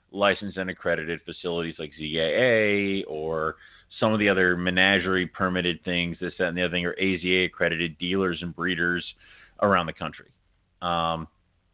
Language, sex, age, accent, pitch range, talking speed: English, male, 30-49, American, 90-115 Hz, 155 wpm